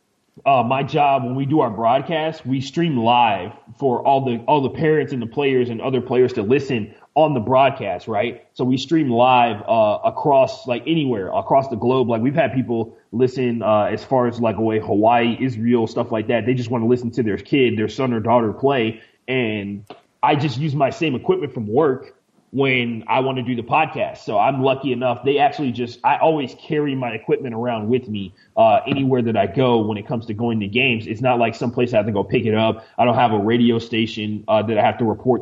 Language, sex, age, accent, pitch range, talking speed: English, male, 30-49, American, 115-135 Hz, 230 wpm